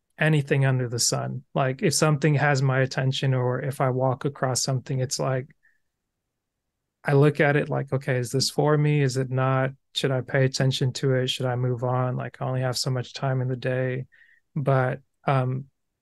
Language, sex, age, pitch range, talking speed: English, male, 20-39, 130-145 Hz, 200 wpm